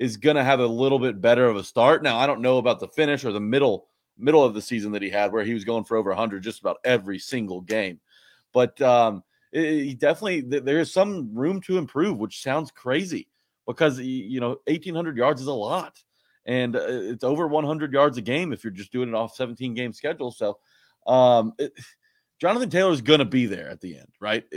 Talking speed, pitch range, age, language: 215 wpm, 120-155 Hz, 30-49, English